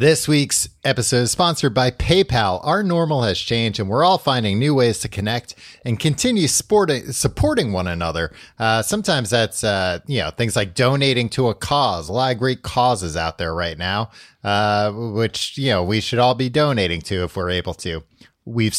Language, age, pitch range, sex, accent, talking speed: English, 30-49, 105-155 Hz, male, American, 190 wpm